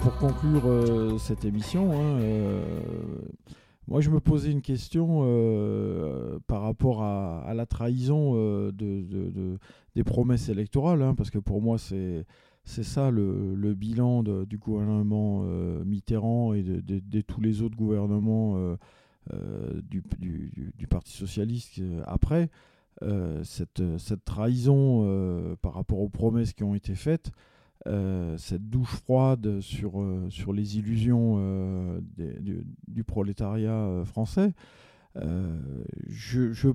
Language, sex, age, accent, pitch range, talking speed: French, male, 40-59, French, 100-125 Hz, 150 wpm